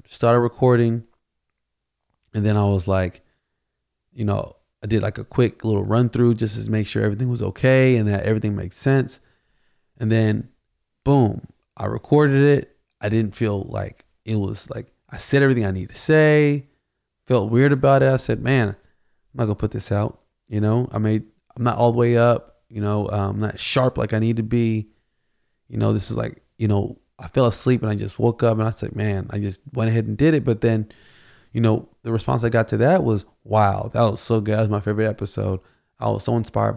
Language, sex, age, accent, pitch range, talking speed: English, male, 20-39, American, 105-125 Hz, 215 wpm